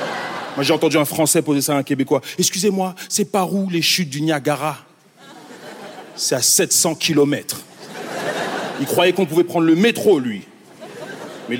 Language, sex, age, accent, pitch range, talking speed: French, male, 40-59, French, 150-225 Hz, 170 wpm